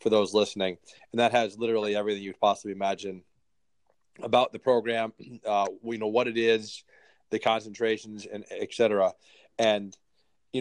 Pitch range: 105-125 Hz